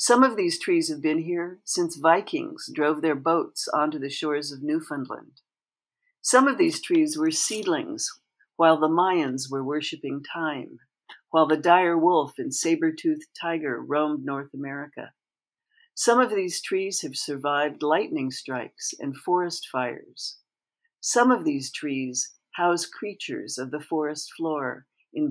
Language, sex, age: English, female, 60-79